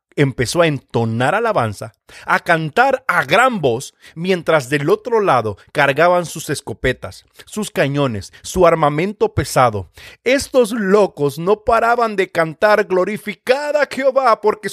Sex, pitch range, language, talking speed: male, 130-210 Hz, Spanish, 125 wpm